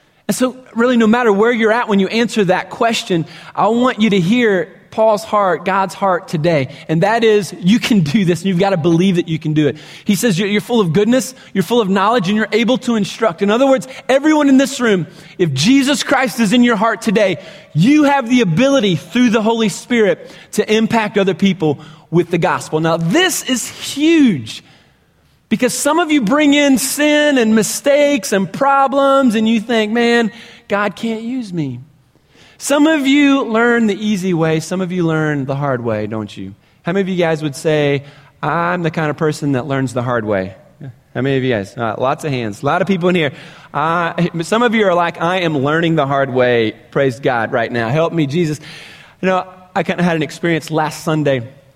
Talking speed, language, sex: 210 wpm, English, male